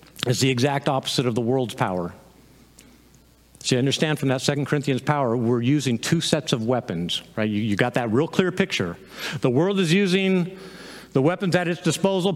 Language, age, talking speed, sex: English, 50-69, 190 wpm, male